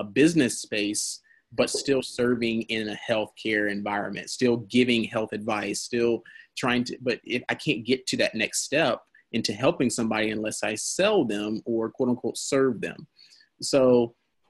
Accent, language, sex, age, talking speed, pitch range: American, English, male, 30-49, 160 wpm, 110-130 Hz